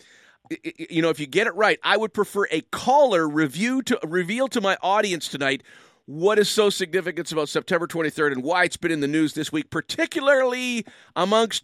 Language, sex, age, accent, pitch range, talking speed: English, male, 50-69, American, 135-190 Hz, 190 wpm